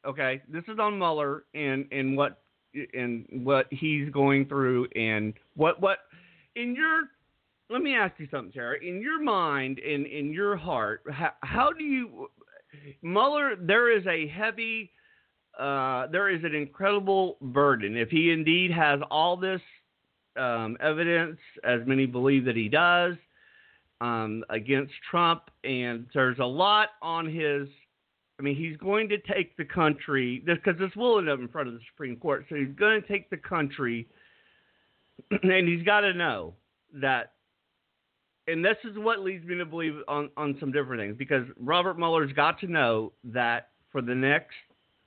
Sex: male